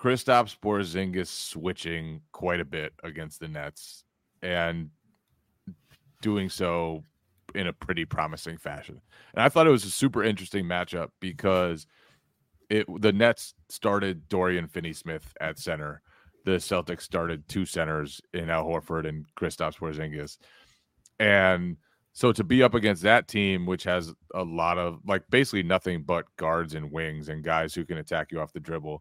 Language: English